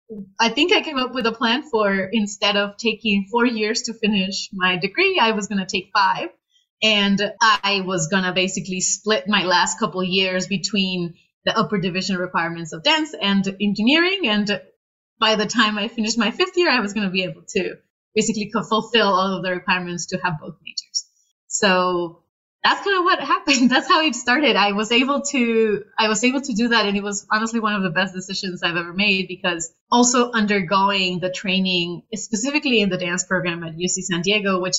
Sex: female